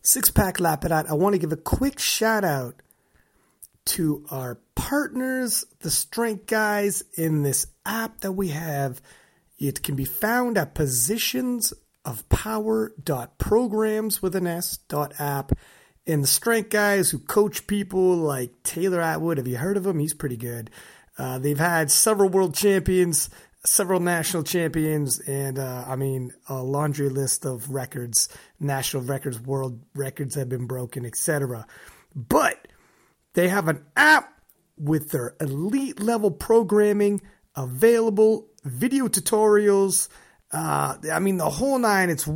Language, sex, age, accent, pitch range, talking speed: English, male, 30-49, American, 140-205 Hz, 140 wpm